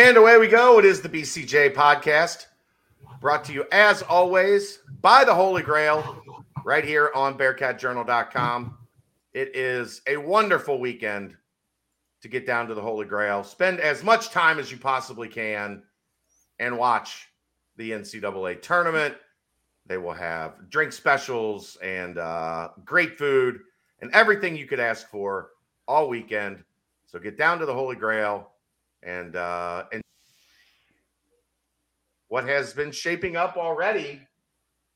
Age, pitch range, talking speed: 50-69, 100-160 Hz, 135 wpm